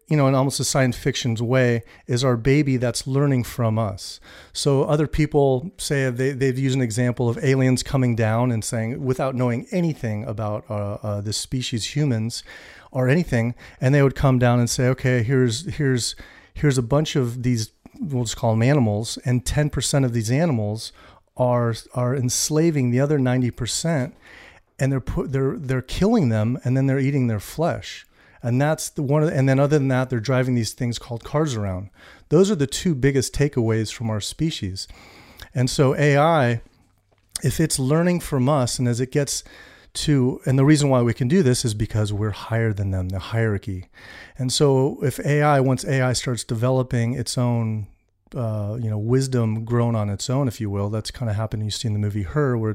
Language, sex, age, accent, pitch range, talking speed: English, male, 40-59, American, 110-135 Hz, 195 wpm